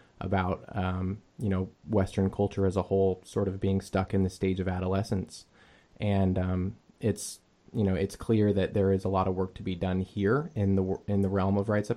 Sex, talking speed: male, 220 wpm